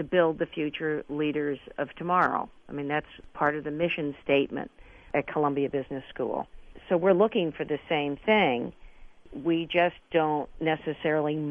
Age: 50-69